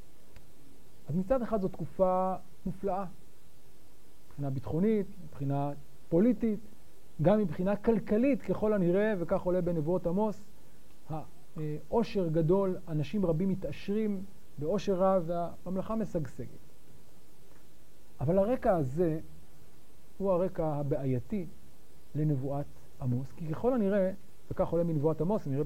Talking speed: 105 wpm